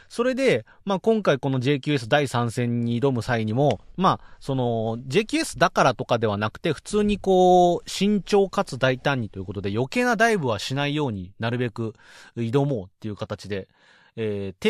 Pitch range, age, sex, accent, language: 115-190 Hz, 30-49, male, native, Japanese